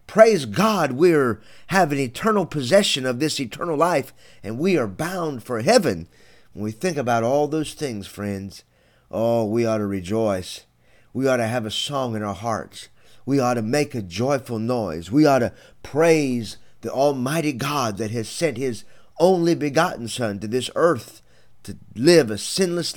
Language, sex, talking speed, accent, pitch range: English, male, 175 wpm, American, 105-145 Hz